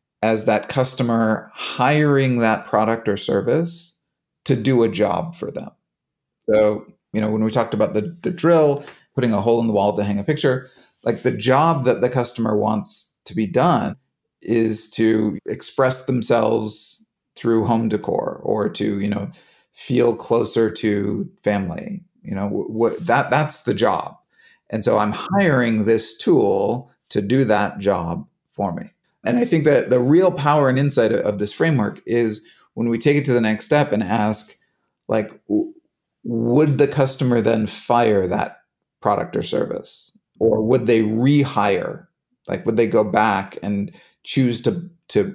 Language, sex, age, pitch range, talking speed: English, male, 30-49, 105-145 Hz, 165 wpm